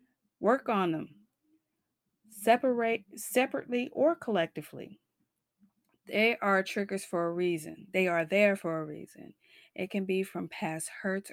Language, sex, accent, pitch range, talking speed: English, female, American, 170-225 Hz, 130 wpm